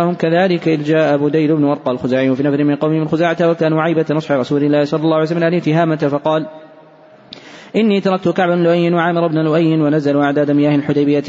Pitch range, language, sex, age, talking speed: 145-165 Hz, Arabic, male, 20-39, 185 wpm